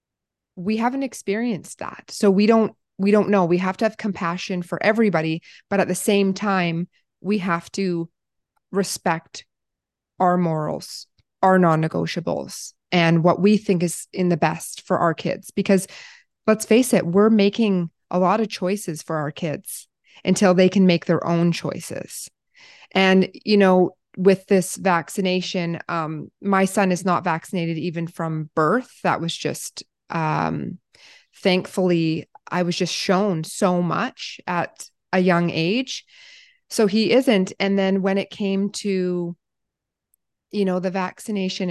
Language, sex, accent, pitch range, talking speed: English, female, American, 170-200 Hz, 150 wpm